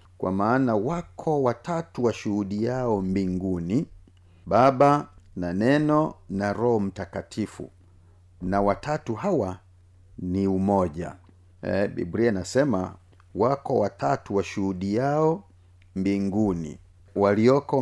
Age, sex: 50-69, male